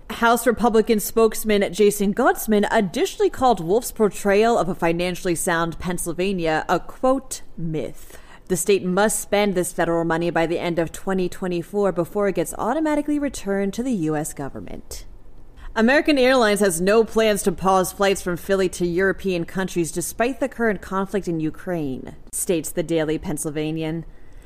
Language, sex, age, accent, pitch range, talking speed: English, female, 30-49, American, 175-240 Hz, 150 wpm